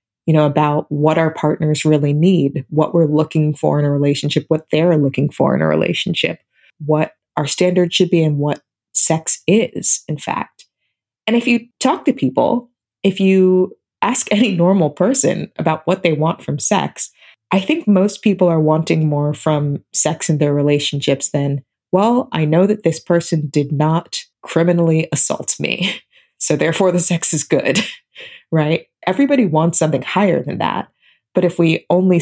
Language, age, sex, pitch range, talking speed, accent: English, 20-39, female, 145-180 Hz, 170 wpm, American